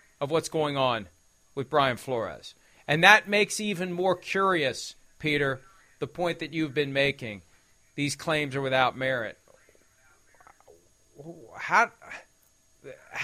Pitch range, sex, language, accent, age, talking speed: 135-175 Hz, male, English, American, 40-59, 120 wpm